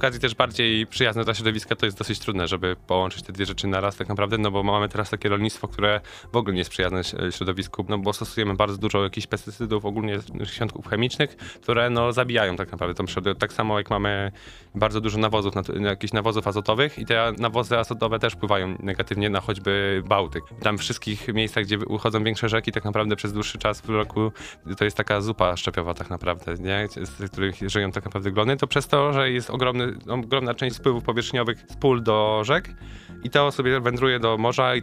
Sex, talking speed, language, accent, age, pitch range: male, 200 wpm, Polish, native, 20-39, 100-120 Hz